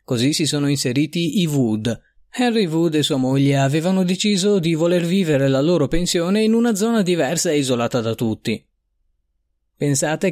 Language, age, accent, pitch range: Italian, 30-49, native, 130-170 Hz